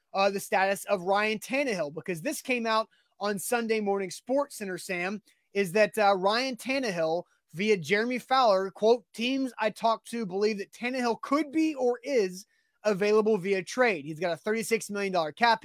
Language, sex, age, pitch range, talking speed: English, male, 20-39, 185-215 Hz, 175 wpm